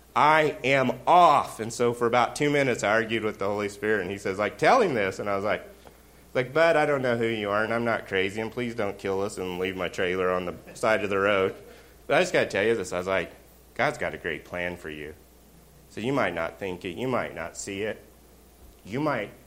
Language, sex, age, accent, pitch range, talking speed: English, male, 30-49, American, 75-110 Hz, 260 wpm